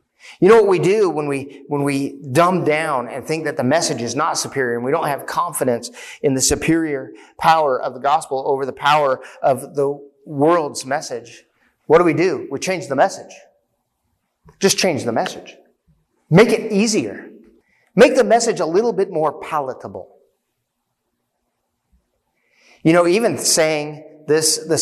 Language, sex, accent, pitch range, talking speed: English, male, American, 140-180 Hz, 160 wpm